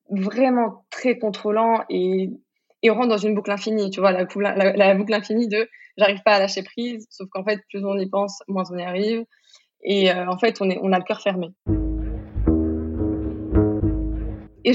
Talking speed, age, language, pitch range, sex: 195 wpm, 20-39, French, 195-235 Hz, female